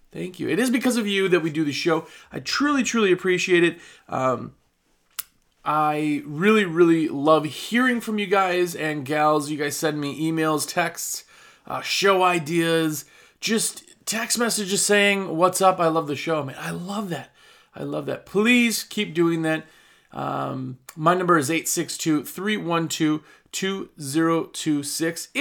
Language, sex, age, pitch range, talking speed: English, male, 30-49, 150-200 Hz, 150 wpm